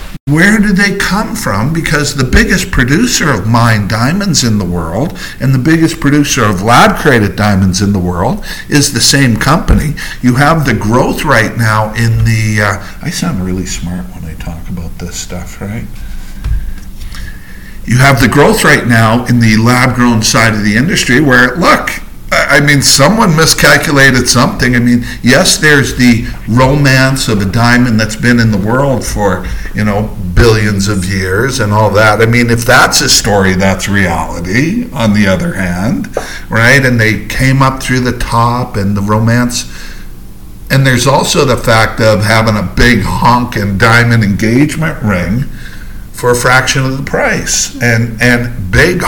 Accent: American